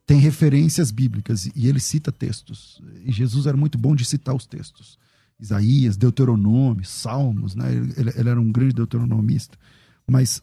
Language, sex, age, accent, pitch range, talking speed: Portuguese, male, 40-59, Brazilian, 115-135 Hz, 155 wpm